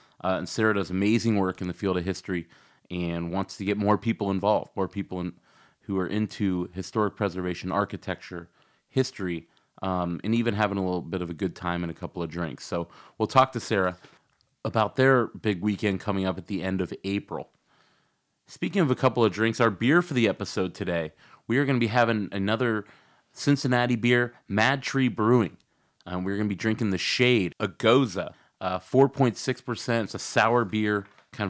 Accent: American